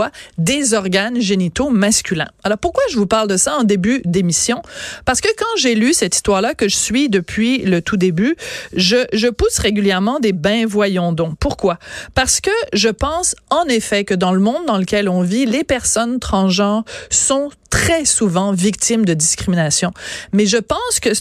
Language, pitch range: French, 195-250 Hz